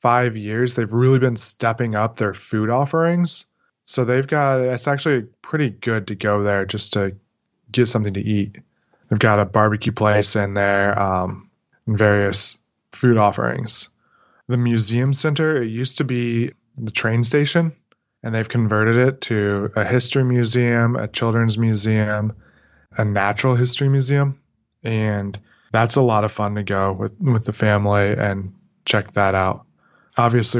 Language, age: English, 20-39